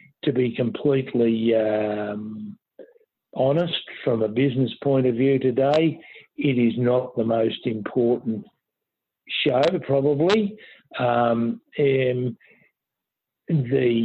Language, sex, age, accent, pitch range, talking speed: English, male, 60-79, Australian, 115-130 Hz, 95 wpm